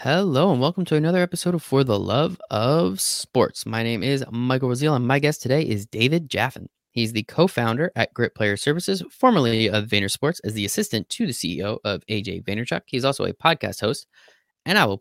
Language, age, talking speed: English, 20-39, 205 wpm